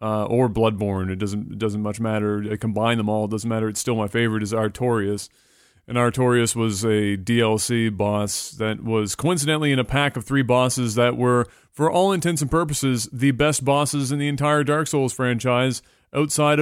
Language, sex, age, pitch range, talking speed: English, male, 30-49, 115-140 Hz, 195 wpm